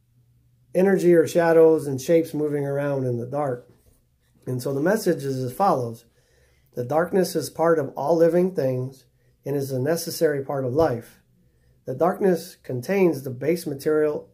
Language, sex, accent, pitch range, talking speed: English, male, American, 125-160 Hz, 160 wpm